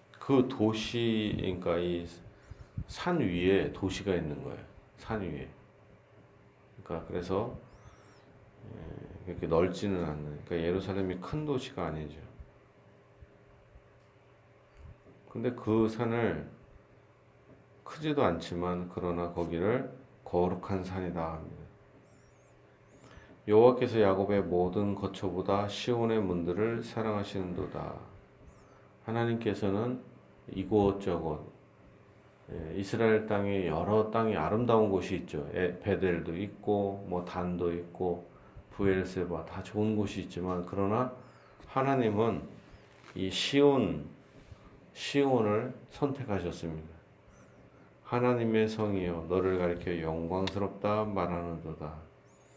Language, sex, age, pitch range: Korean, male, 40-59, 90-110 Hz